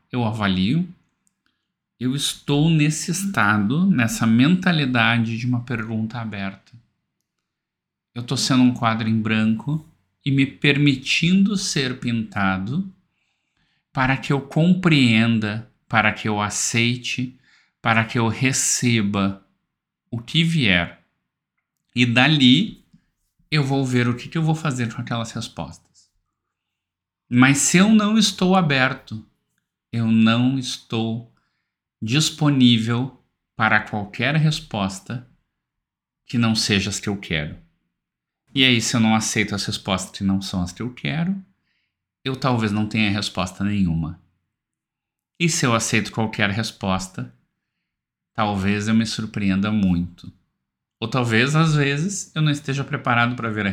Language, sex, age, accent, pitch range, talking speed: Portuguese, male, 50-69, Brazilian, 100-140 Hz, 130 wpm